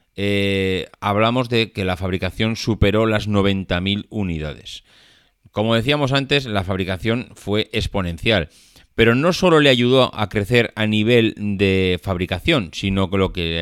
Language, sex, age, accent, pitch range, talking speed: Spanish, male, 30-49, Spanish, 95-125 Hz, 140 wpm